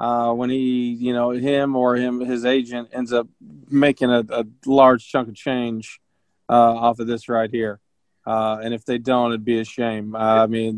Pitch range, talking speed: 115-135 Hz, 200 wpm